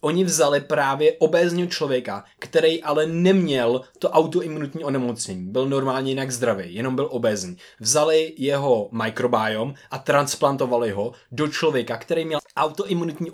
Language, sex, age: Czech, male, 20-39